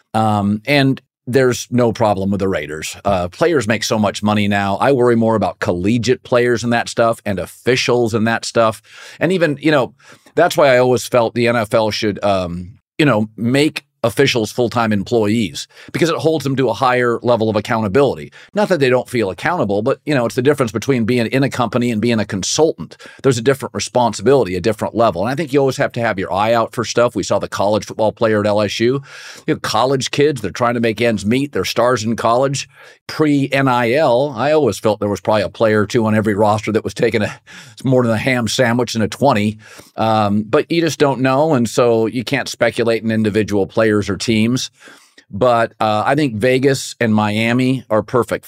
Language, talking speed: English, 215 wpm